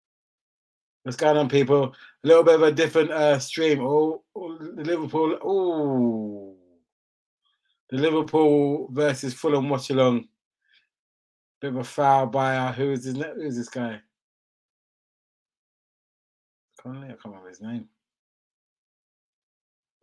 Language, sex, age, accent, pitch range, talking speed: English, male, 30-49, British, 120-150 Hz, 125 wpm